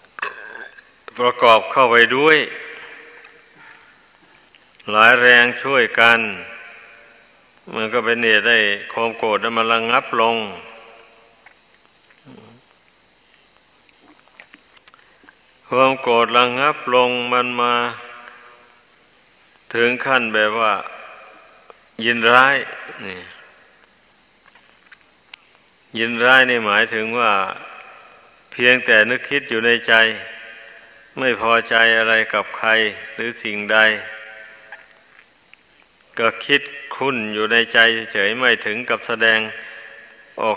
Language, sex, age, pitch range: Thai, male, 60-79, 110-120 Hz